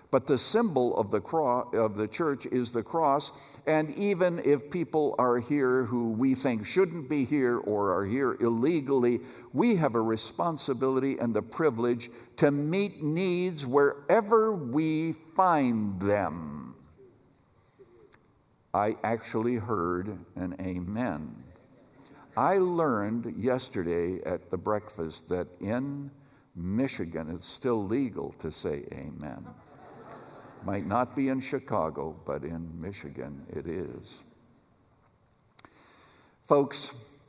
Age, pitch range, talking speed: 60-79, 105-140 Hz, 115 wpm